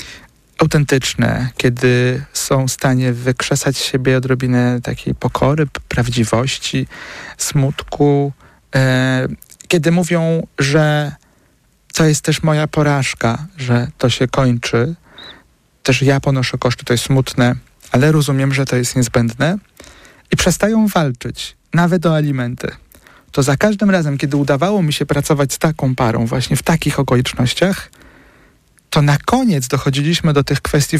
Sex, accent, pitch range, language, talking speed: male, native, 130-160 Hz, Polish, 130 wpm